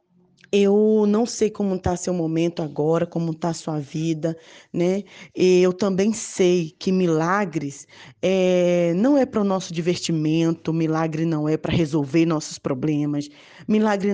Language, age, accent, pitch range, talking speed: Portuguese, 20-39, Brazilian, 155-195 Hz, 145 wpm